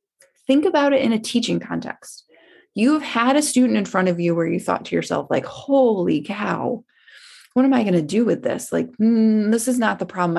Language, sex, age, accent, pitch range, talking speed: English, female, 20-39, American, 185-260 Hz, 220 wpm